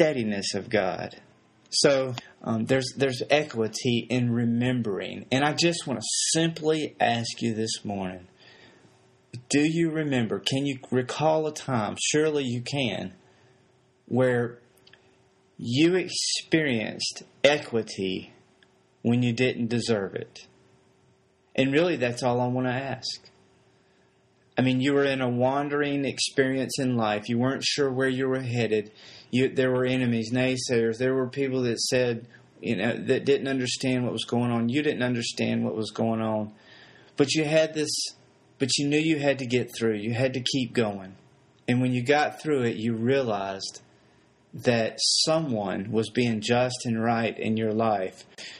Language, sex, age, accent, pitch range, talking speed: English, male, 30-49, American, 115-150 Hz, 155 wpm